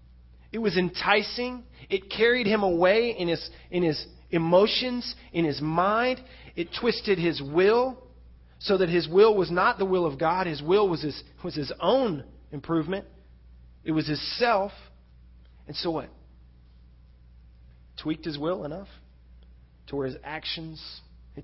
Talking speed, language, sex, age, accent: 145 wpm, English, male, 30-49, American